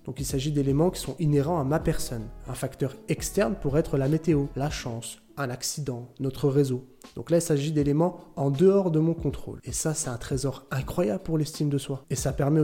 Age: 20-39